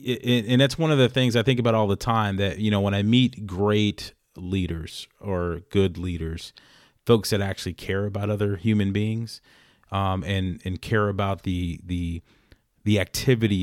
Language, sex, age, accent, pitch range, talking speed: English, male, 30-49, American, 85-105 Hz, 175 wpm